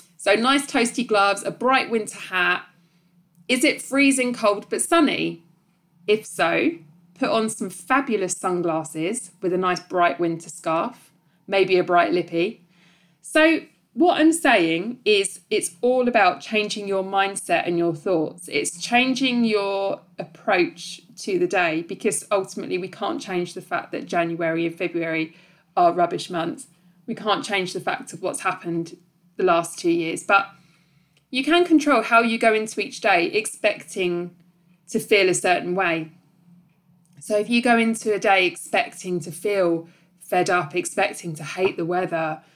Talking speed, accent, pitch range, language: 155 wpm, British, 170-220 Hz, English